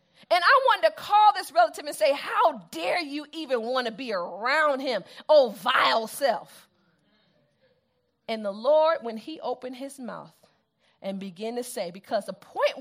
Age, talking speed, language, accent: 40-59, 170 wpm, English, American